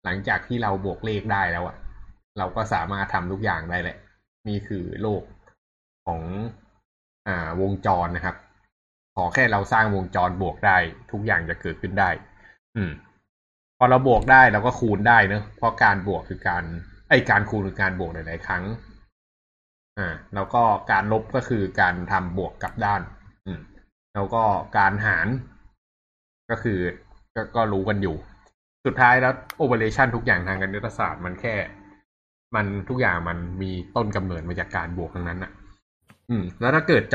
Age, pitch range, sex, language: 20-39, 90-105 Hz, male, Thai